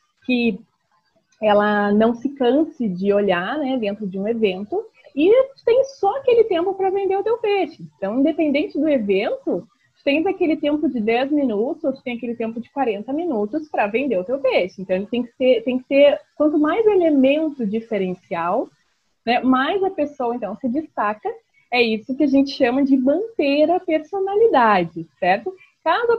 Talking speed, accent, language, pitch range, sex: 170 wpm, Brazilian, Portuguese, 210-315 Hz, female